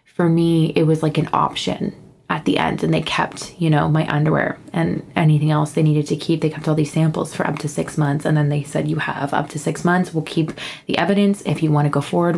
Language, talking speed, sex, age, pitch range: English, 260 wpm, female, 20-39, 155-170 Hz